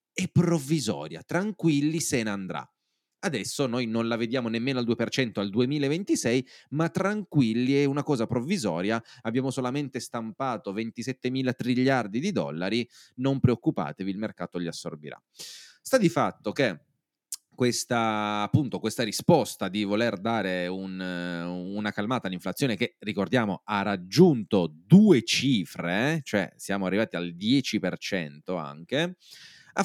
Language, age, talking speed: Italian, 30-49, 125 wpm